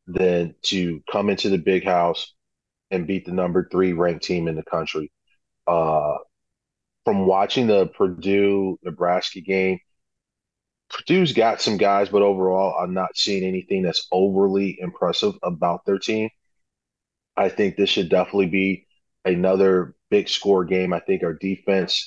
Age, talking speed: 30-49, 145 wpm